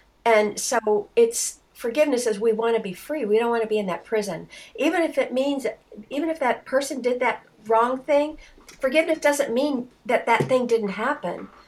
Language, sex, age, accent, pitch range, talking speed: English, female, 50-69, American, 215-265 Hz, 195 wpm